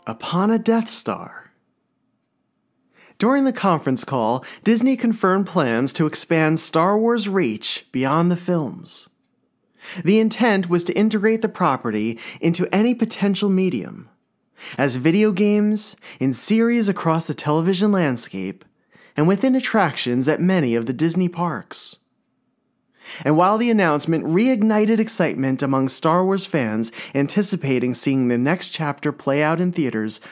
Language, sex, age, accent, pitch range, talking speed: English, male, 30-49, American, 135-210 Hz, 135 wpm